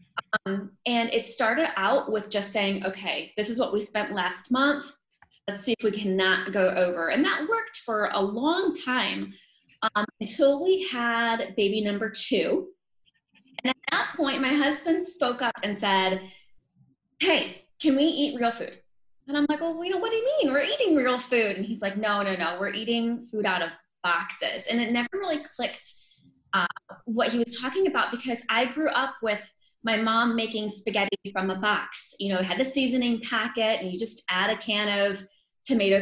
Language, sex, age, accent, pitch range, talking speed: English, female, 20-39, American, 195-270 Hz, 195 wpm